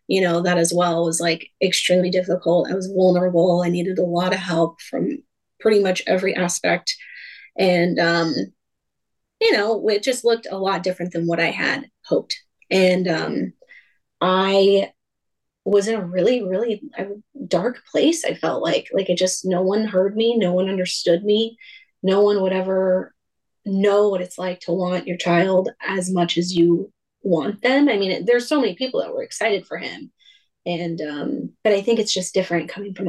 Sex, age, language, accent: female, 20-39, English, American